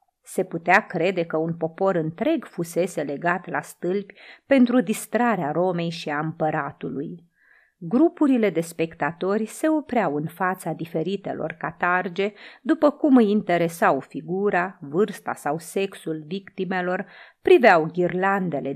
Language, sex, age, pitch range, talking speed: Romanian, female, 30-49, 170-260 Hz, 120 wpm